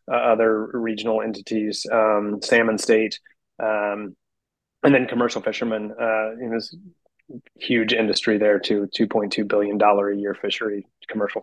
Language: English